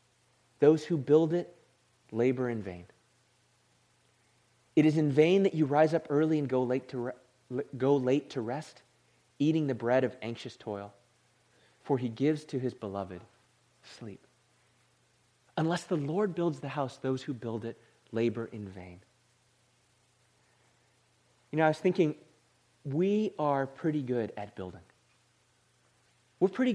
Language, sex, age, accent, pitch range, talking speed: English, male, 30-49, American, 120-170 Hz, 145 wpm